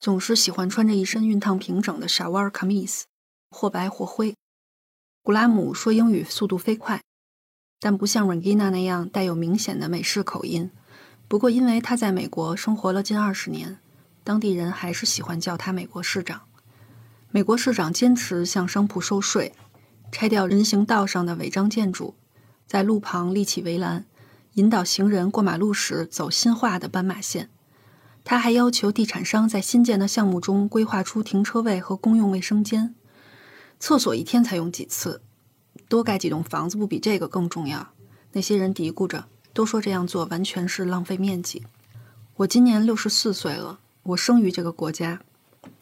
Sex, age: female, 20-39